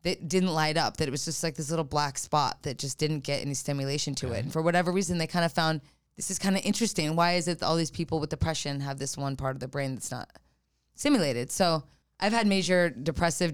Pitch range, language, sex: 140-170 Hz, English, female